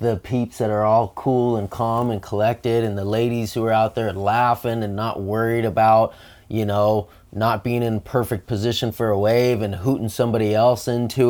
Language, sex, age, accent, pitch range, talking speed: English, male, 20-39, American, 95-110 Hz, 195 wpm